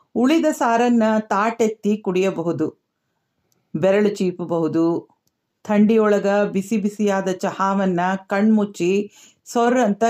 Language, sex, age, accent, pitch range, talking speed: Kannada, female, 50-69, native, 190-225 Hz, 70 wpm